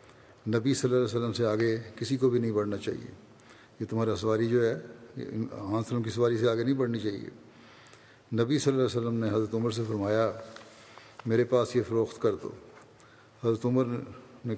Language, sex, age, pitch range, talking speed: Urdu, male, 50-69, 110-125 Hz, 190 wpm